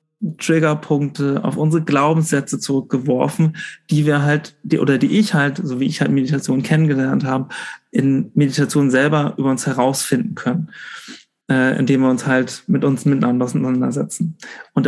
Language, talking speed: German, 150 wpm